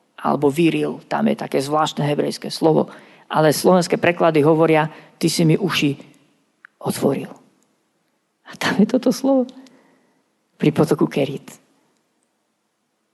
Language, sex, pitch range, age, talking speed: Slovak, female, 155-190 Hz, 40-59, 115 wpm